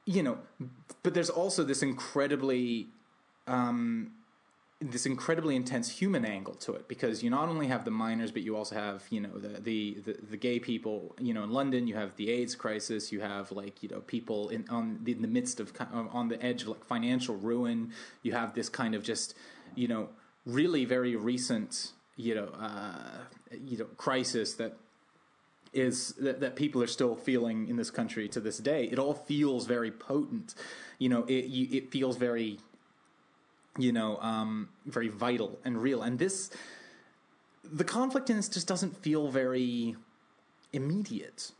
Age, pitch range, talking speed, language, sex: 20-39, 115-160 Hz, 180 wpm, English, male